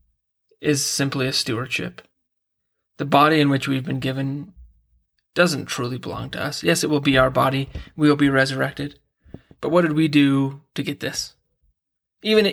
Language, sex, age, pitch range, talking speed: English, male, 30-49, 135-155 Hz, 170 wpm